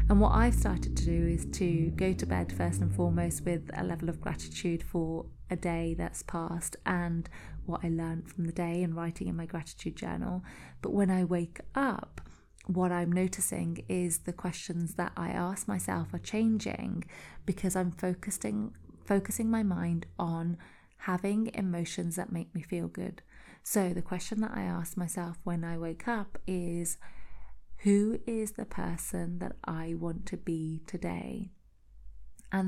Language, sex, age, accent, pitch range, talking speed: English, female, 30-49, British, 165-190 Hz, 165 wpm